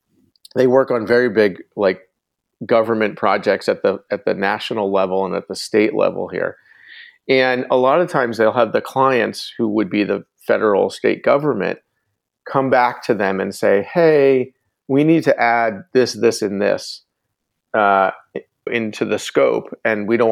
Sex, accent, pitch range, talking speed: male, American, 115-155 Hz, 170 wpm